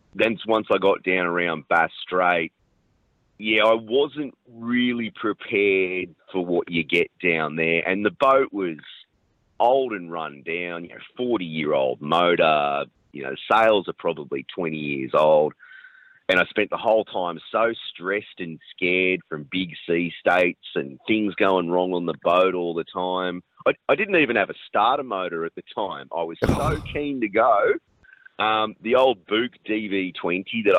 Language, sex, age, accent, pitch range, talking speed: English, male, 30-49, Australian, 85-110 Hz, 170 wpm